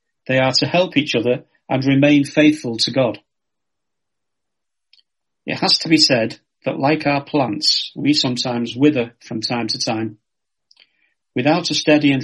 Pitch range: 125-155 Hz